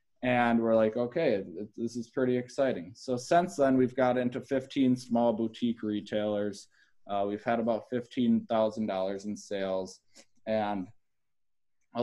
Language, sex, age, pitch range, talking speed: English, male, 20-39, 105-120 Hz, 135 wpm